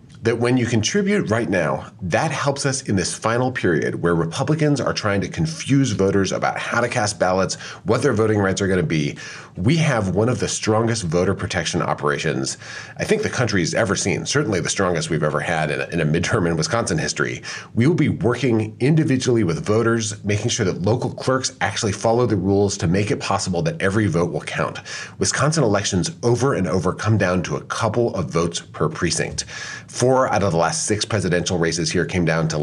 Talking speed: 205 wpm